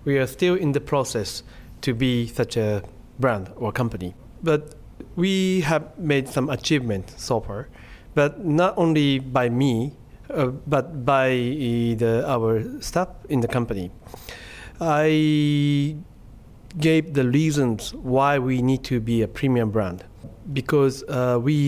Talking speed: 140 wpm